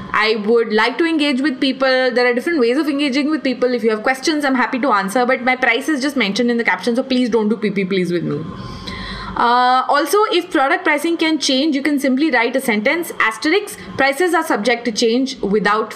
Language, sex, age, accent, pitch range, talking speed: English, female, 20-39, Indian, 235-300 Hz, 225 wpm